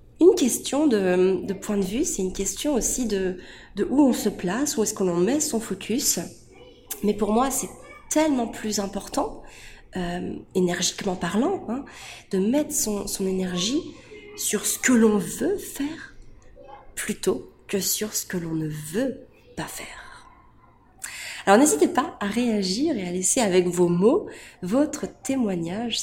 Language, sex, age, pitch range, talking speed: French, female, 30-49, 180-240 Hz, 160 wpm